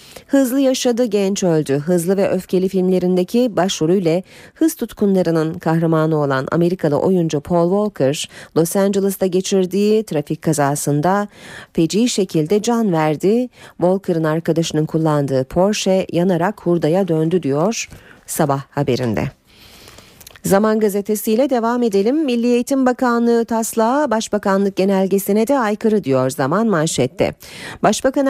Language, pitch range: Turkish, 160-225 Hz